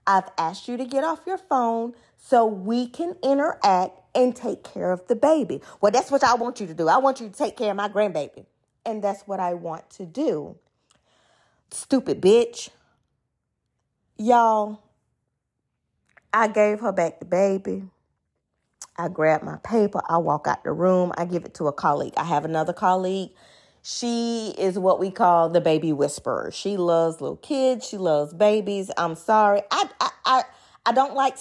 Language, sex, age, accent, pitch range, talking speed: English, female, 30-49, American, 175-240 Hz, 180 wpm